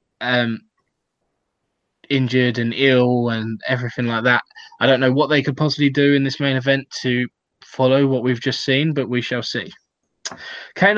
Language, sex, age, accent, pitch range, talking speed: English, male, 10-29, British, 120-135 Hz, 170 wpm